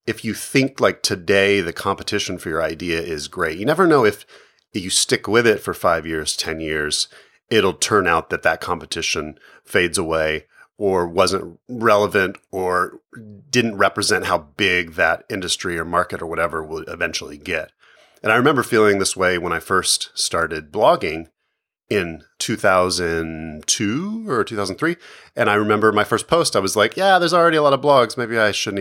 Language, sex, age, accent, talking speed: English, male, 30-49, American, 175 wpm